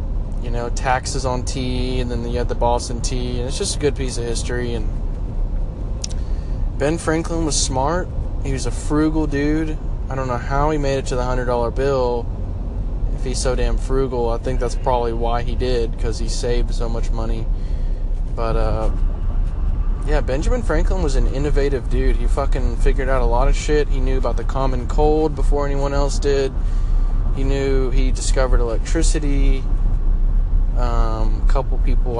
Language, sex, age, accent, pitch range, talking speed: English, male, 20-39, American, 100-125 Hz, 175 wpm